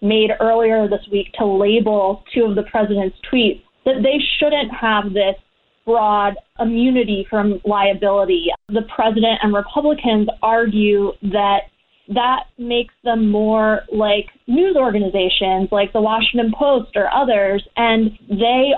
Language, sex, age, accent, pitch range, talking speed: English, female, 20-39, American, 205-230 Hz, 130 wpm